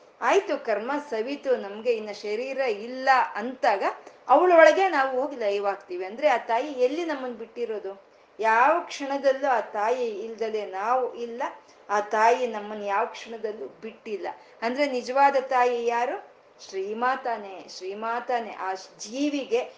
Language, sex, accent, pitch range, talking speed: Kannada, female, native, 205-270 Hz, 120 wpm